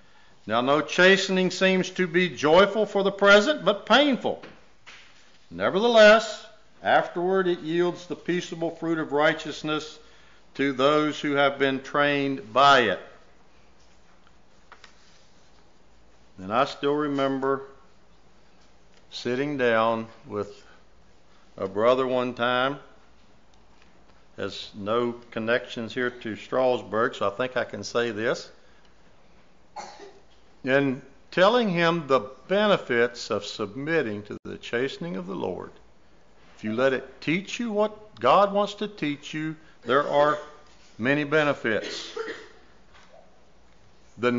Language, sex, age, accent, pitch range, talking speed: English, male, 60-79, American, 125-180 Hz, 110 wpm